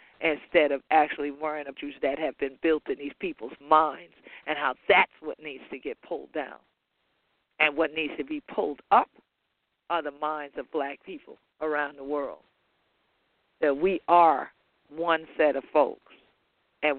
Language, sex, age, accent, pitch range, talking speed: English, female, 50-69, American, 145-165 Hz, 165 wpm